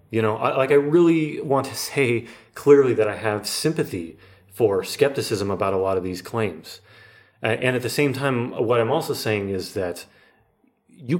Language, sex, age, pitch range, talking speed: Bulgarian, male, 30-49, 110-145 Hz, 190 wpm